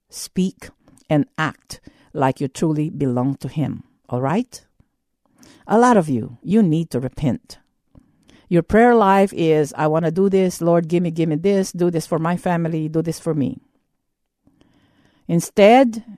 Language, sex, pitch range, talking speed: English, female, 150-210 Hz, 165 wpm